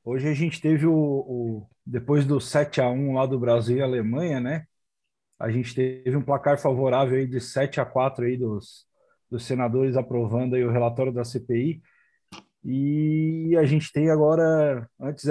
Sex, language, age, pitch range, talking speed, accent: male, Portuguese, 20-39, 130-155 Hz, 155 wpm, Brazilian